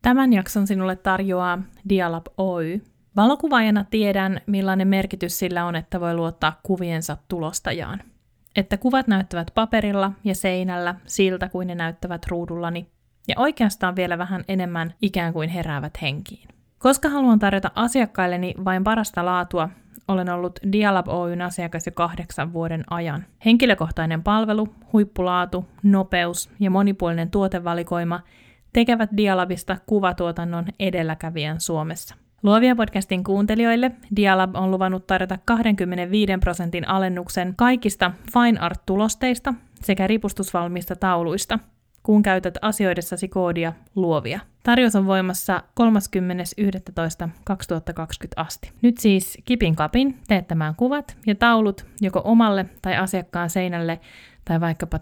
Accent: native